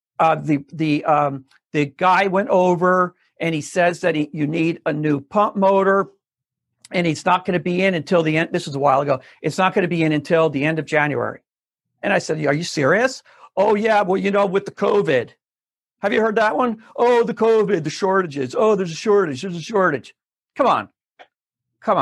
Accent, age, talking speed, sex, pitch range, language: American, 50-69, 215 wpm, male, 145-195 Hz, English